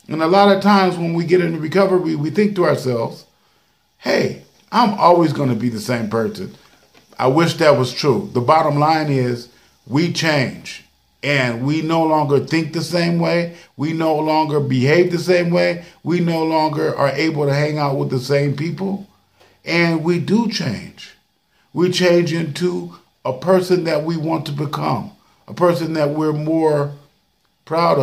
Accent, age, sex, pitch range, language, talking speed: American, 50-69, male, 145-195 Hz, English, 175 wpm